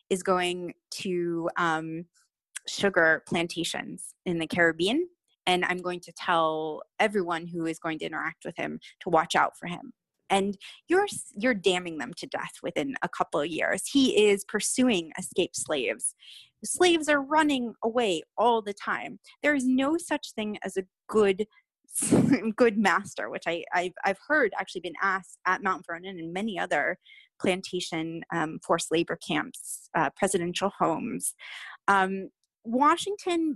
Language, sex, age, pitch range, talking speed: English, female, 20-39, 175-245 Hz, 150 wpm